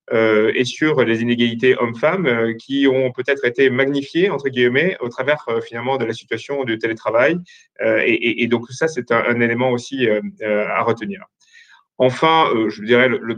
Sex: male